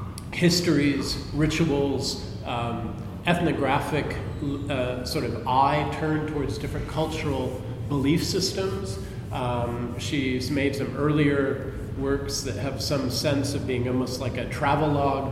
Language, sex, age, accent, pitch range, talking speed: English, male, 40-59, American, 125-150 Hz, 120 wpm